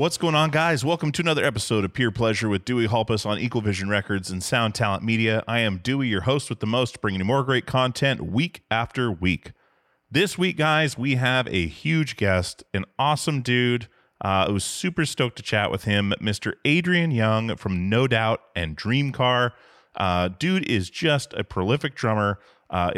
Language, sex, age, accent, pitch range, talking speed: English, male, 30-49, American, 100-130 Hz, 195 wpm